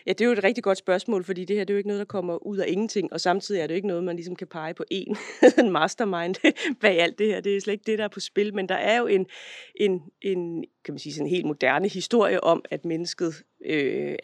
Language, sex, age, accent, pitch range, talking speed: Danish, female, 30-49, native, 170-205 Hz, 280 wpm